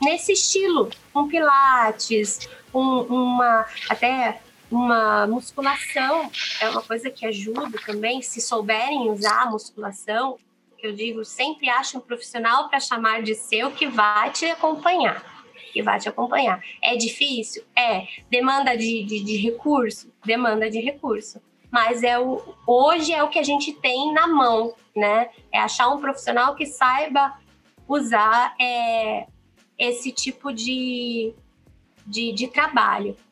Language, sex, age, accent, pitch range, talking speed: Portuguese, female, 20-39, Brazilian, 220-280 Hz, 140 wpm